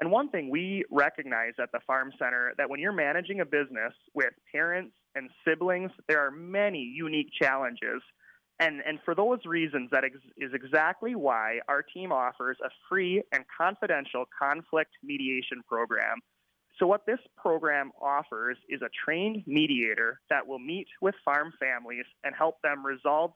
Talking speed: 160 wpm